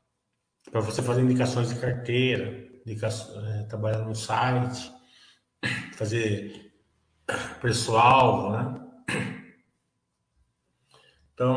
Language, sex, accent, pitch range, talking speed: Portuguese, male, Brazilian, 110-160 Hz, 65 wpm